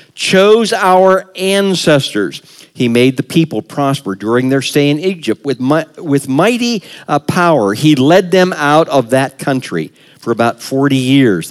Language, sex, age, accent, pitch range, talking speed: English, male, 50-69, American, 130-180 Hz, 155 wpm